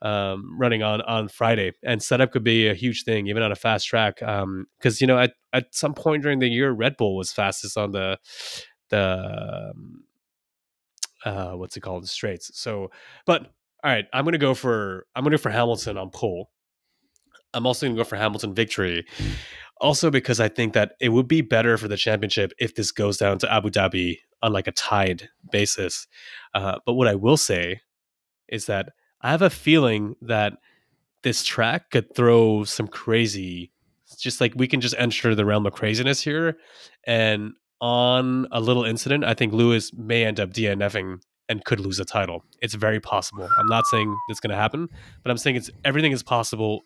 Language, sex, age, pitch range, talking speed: English, male, 20-39, 100-125 Hz, 200 wpm